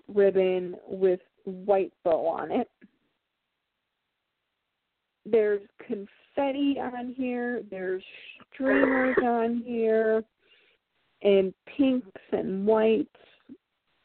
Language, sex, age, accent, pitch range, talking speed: English, female, 40-59, American, 200-245 Hz, 75 wpm